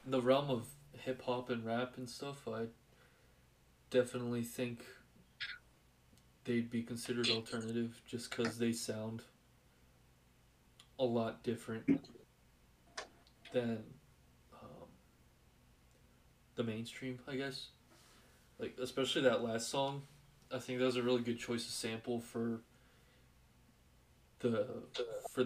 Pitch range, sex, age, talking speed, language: 115-125 Hz, male, 20-39, 115 wpm, English